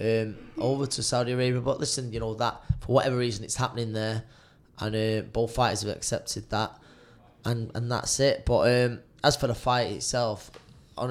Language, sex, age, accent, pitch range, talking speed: English, male, 20-39, British, 115-125 Hz, 190 wpm